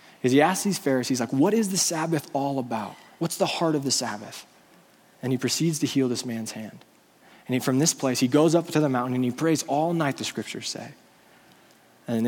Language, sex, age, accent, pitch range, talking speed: English, male, 20-39, American, 125-165 Hz, 225 wpm